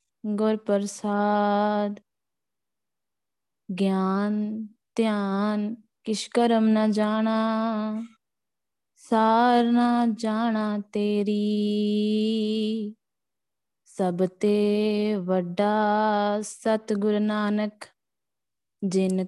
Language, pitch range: Punjabi, 210-225 Hz